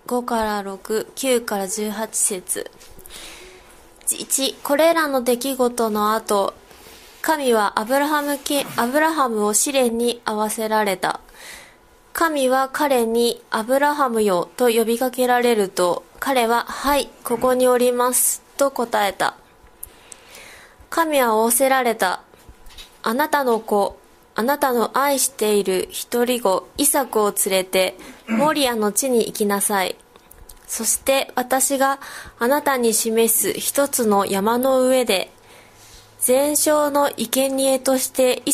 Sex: female